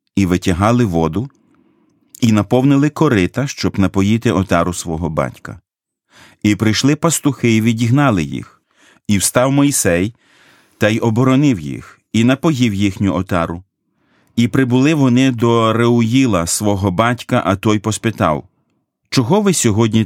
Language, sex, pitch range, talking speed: Ukrainian, male, 95-125 Hz, 125 wpm